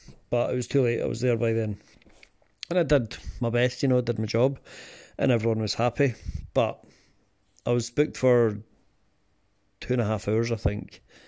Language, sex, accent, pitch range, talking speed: English, male, British, 105-120 Hz, 195 wpm